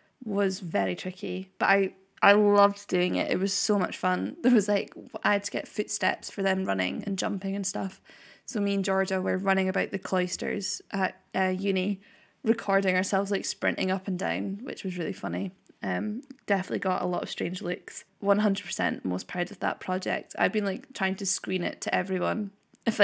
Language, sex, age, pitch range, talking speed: English, female, 10-29, 185-225 Hz, 200 wpm